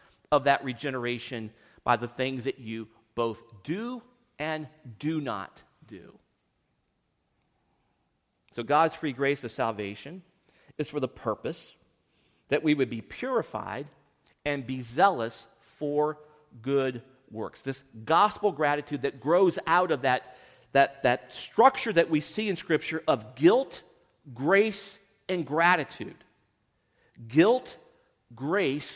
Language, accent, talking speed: English, American, 120 wpm